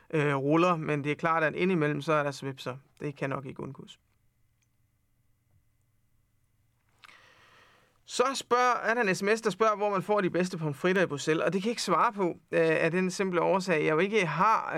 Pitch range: 145-185 Hz